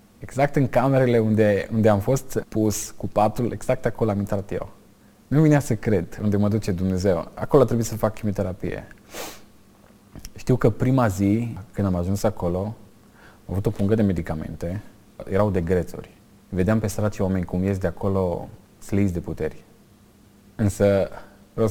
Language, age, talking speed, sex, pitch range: Romanian, 20-39, 160 wpm, male, 100-110 Hz